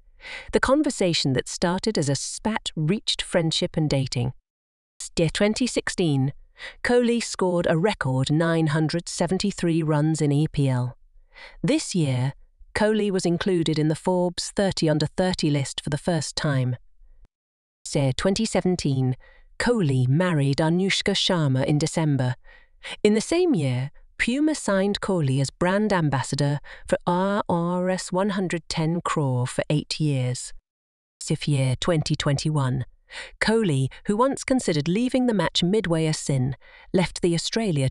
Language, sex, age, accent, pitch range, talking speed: Hindi, female, 40-59, British, 135-190 Hz, 125 wpm